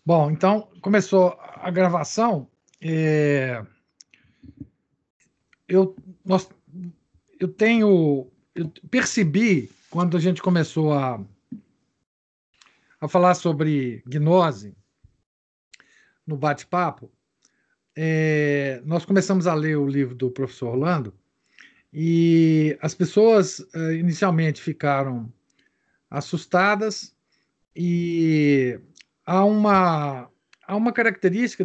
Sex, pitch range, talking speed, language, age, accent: male, 145-190 Hz, 85 wpm, Portuguese, 50-69, Brazilian